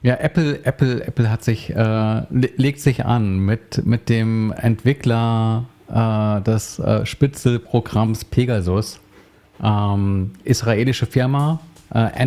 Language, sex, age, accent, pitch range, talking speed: German, male, 40-59, German, 105-125 Hz, 110 wpm